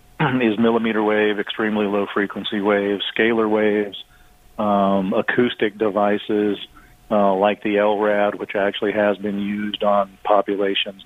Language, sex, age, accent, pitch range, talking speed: English, male, 40-59, American, 100-110 Hz, 125 wpm